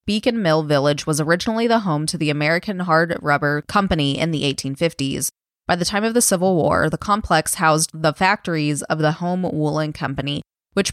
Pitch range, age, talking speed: 150-200 Hz, 20-39, 185 wpm